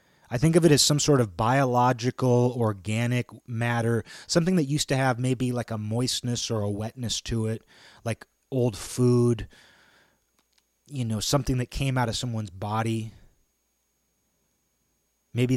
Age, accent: 30-49, American